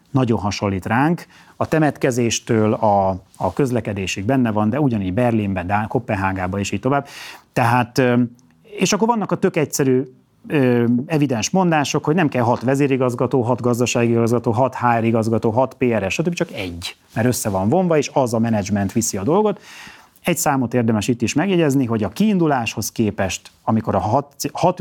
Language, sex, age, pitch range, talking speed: Hungarian, male, 30-49, 105-145 Hz, 165 wpm